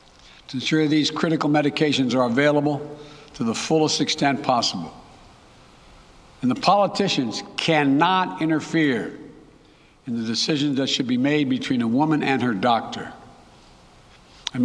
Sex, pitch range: male, 135-160 Hz